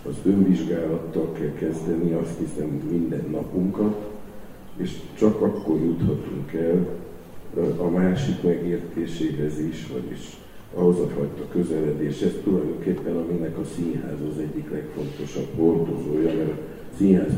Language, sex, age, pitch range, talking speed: Hungarian, male, 60-79, 70-85 Hz, 120 wpm